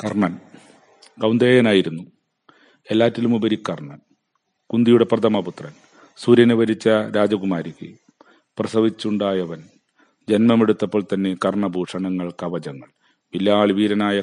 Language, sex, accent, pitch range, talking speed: Malayalam, male, native, 90-105 Hz, 70 wpm